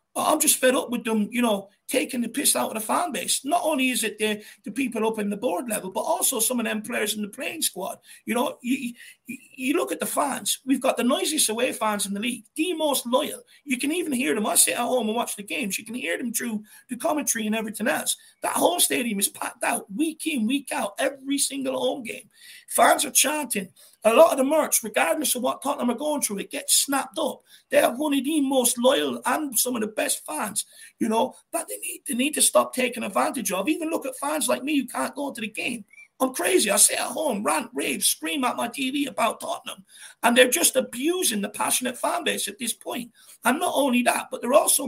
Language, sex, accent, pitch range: English, male, British, 230-295 Hz